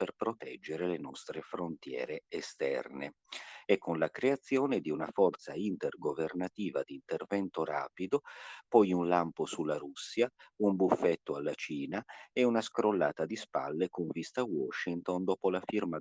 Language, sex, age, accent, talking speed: Italian, male, 50-69, native, 140 wpm